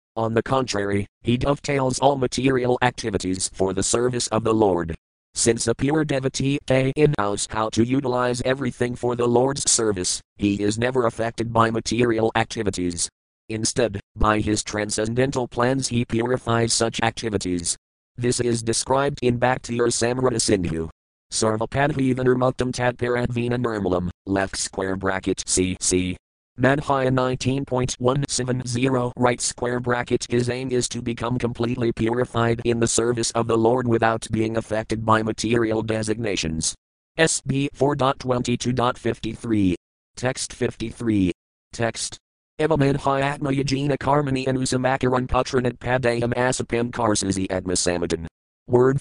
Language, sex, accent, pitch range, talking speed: English, male, American, 110-130 Hz, 120 wpm